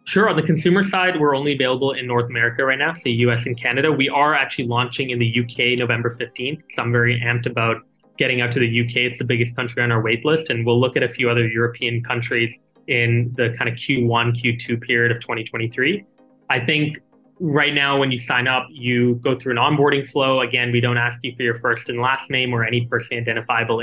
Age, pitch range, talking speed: 20-39, 120-135 Hz, 230 wpm